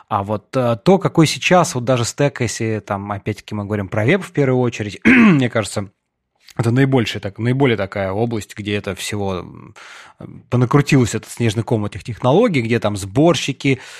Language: Russian